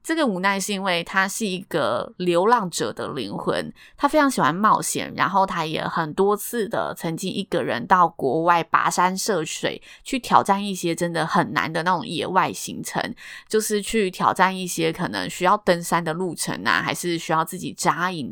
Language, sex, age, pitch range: Chinese, female, 20-39, 165-215 Hz